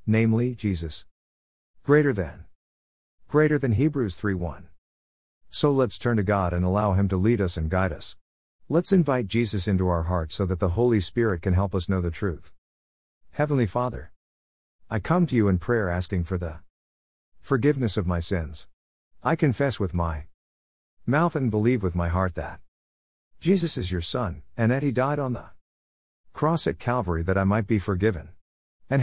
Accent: American